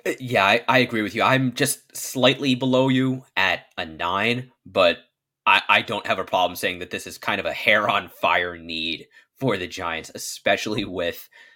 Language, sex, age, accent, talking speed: English, male, 20-39, American, 190 wpm